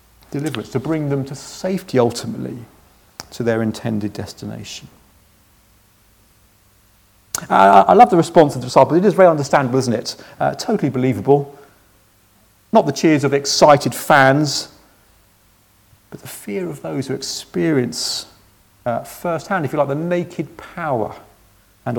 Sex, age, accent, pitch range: male, 40-59, British, 100-135 Hz